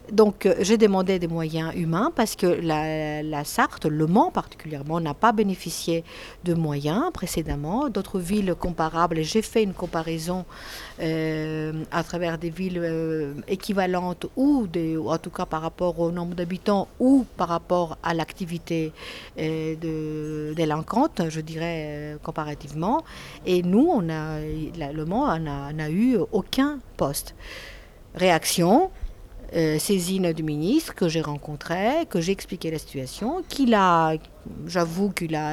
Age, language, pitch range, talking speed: 50-69, French, 155-195 Hz, 150 wpm